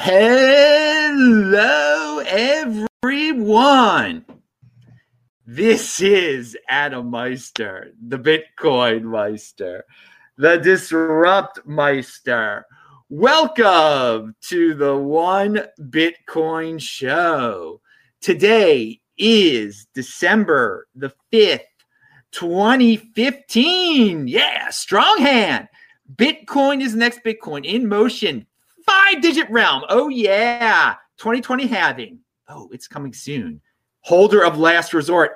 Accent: American